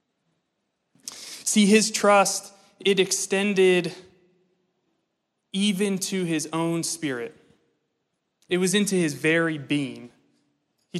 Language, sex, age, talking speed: English, male, 20-39, 95 wpm